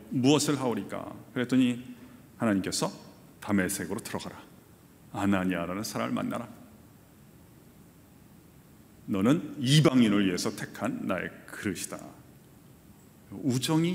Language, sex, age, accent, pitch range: Korean, male, 40-59, native, 100-140 Hz